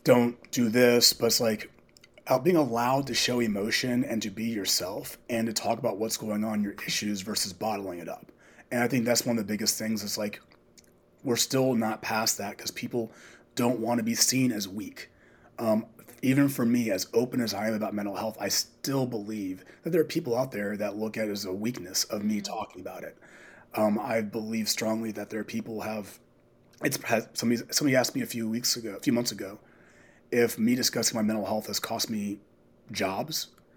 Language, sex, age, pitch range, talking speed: English, male, 30-49, 105-120 Hz, 210 wpm